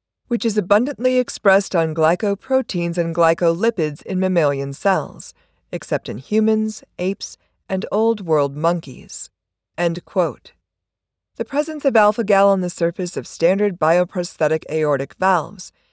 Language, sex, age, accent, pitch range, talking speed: English, female, 40-59, American, 165-220 Hz, 120 wpm